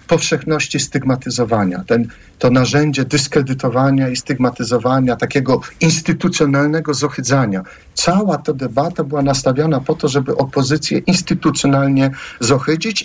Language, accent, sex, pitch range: Polish, native, male, 130-155 Hz